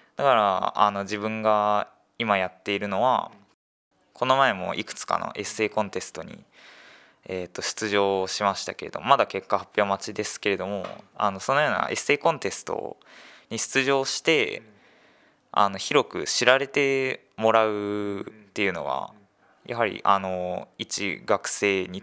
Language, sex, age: Japanese, male, 20-39